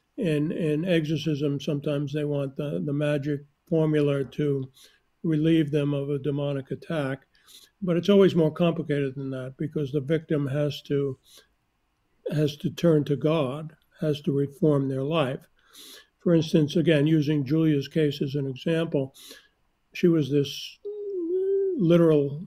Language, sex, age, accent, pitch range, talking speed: English, male, 60-79, American, 145-170 Hz, 140 wpm